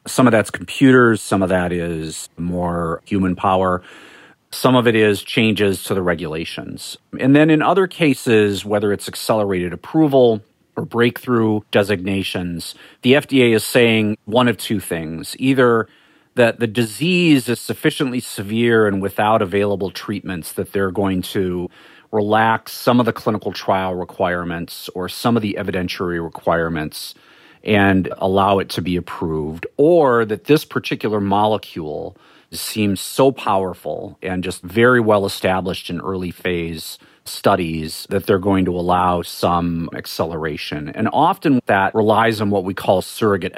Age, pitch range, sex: 40-59, 90-115 Hz, male